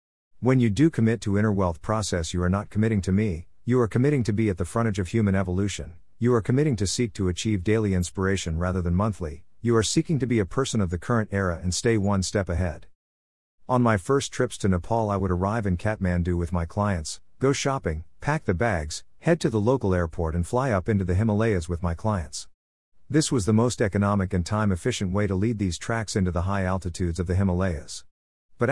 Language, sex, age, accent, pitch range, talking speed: English, male, 50-69, American, 90-110 Hz, 220 wpm